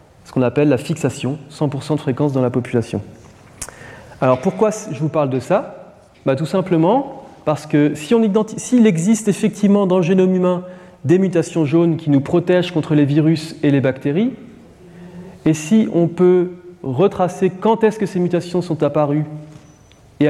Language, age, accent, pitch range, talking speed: French, 30-49, French, 140-180 Hz, 170 wpm